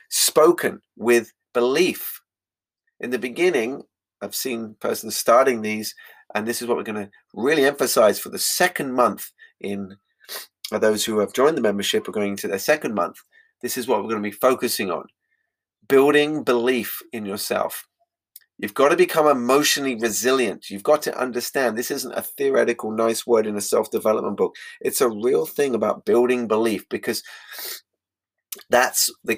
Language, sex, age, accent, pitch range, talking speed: English, male, 30-49, British, 100-140 Hz, 160 wpm